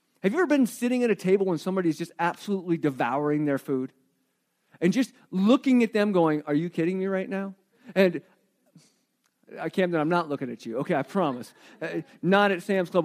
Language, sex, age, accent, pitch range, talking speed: English, male, 40-59, American, 180-255 Hz, 195 wpm